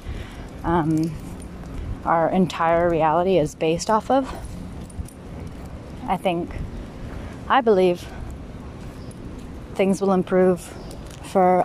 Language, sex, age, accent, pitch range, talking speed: English, female, 30-49, American, 155-200 Hz, 80 wpm